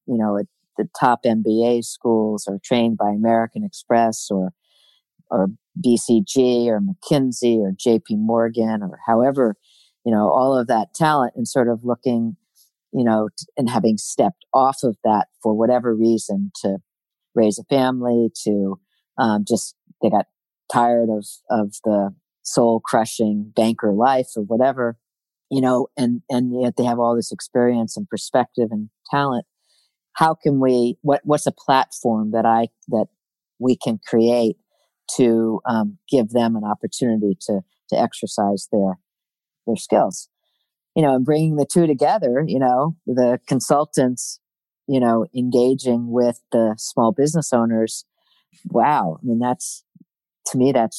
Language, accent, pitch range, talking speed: English, American, 110-130 Hz, 145 wpm